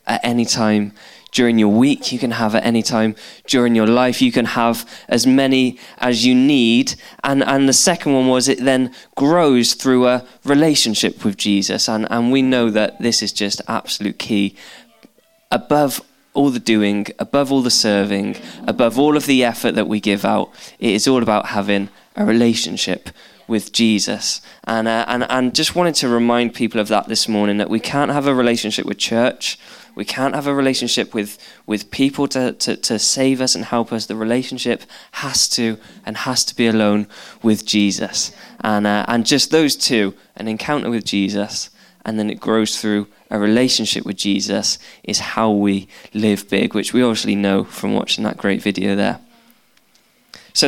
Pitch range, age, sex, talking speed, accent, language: 105-135 Hz, 10-29, male, 185 wpm, British, English